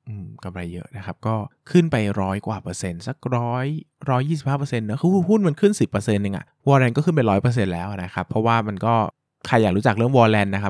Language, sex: Thai, male